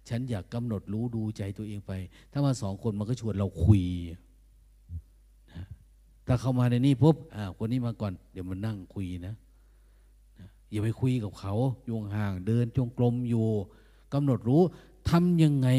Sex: male